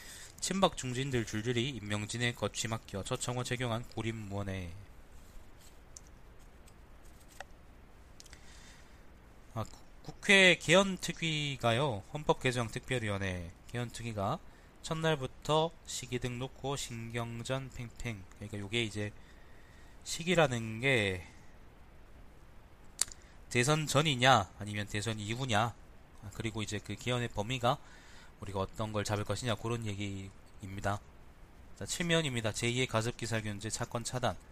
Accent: native